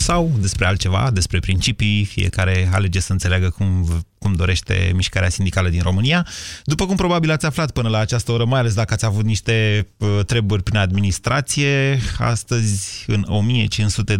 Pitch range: 95-115 Hz